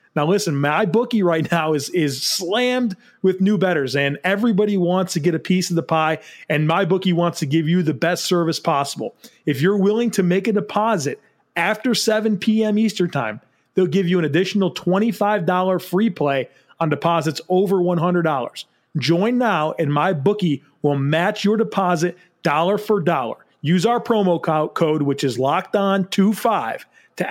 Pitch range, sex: 155-200 Hz, male